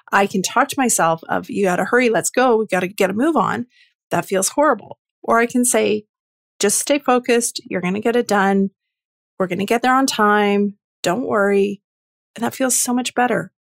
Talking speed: 205 wpm